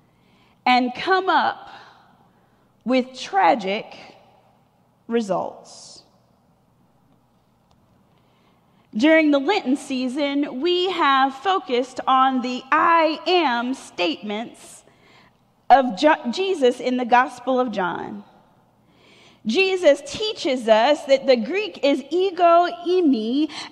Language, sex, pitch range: English, female, 265-345 Hz